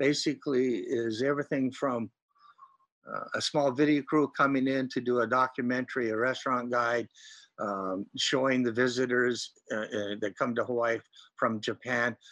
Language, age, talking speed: English, 60-79, 145 wpm